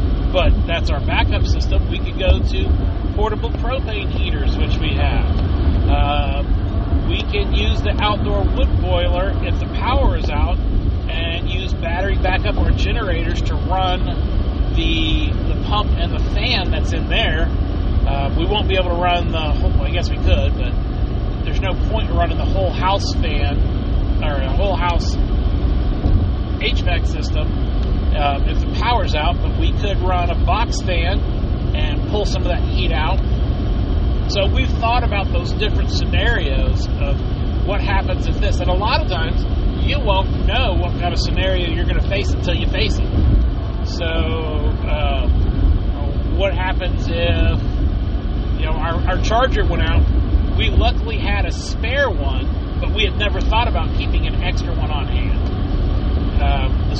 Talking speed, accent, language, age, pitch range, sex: 165 wpm, American, English, 40-59, 75-95 Hz, male